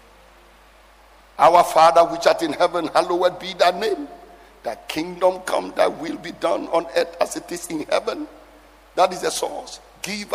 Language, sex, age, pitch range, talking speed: English, male, 50-69, 195-315 Hz, 170 wpm